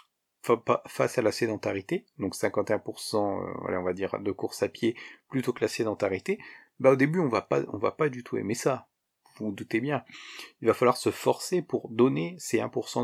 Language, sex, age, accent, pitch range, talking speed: French, male, 40-59, French, 120-160 Hz, 205 wpm